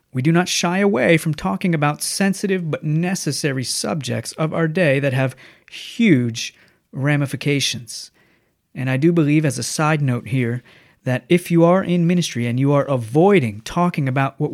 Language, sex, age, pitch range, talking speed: English, male, 30-49, 130-165 Hz, 170 wpm